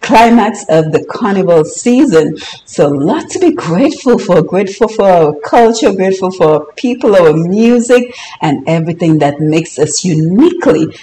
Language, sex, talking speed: English, female, 145 wpm